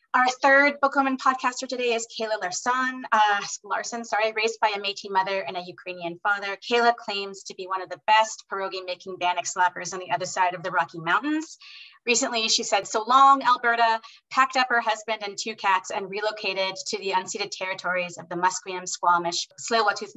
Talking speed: 190 wpm